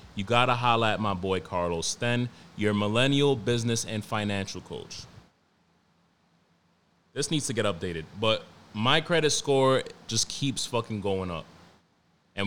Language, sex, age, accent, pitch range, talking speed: English, male, 20-39, American, 105-140 Hz, 145 wpm